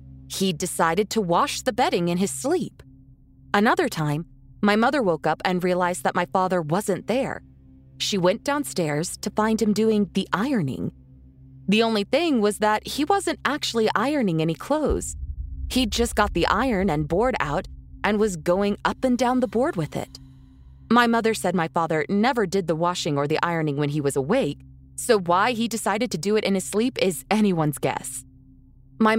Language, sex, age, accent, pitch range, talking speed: English, female, 20-39, American, 150-225 Hz, 185 wpm